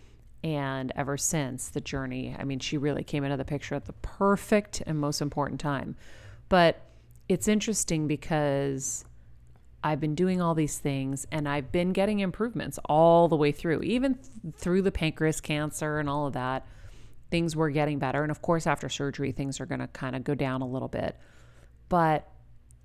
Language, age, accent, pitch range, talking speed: English, 30-49, American, 130-155 Hz, 180 wpm